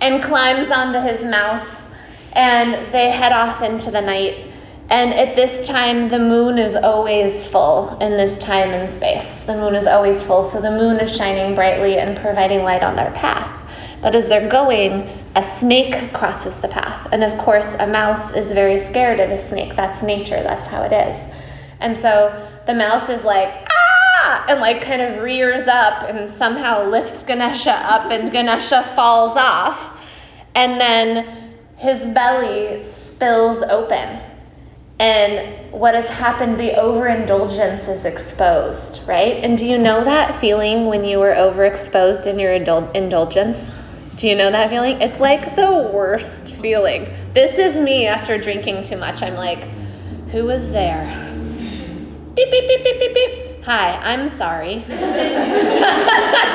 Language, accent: English, American